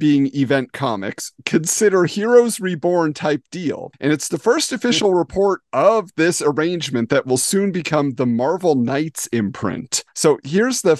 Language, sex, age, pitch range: English, male, 40-59, 125-175 Hz